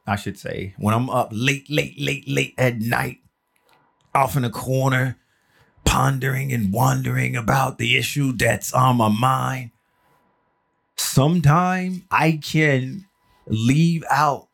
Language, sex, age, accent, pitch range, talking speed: English, male, 30-49, American, 105-135 Hz, 130 wpm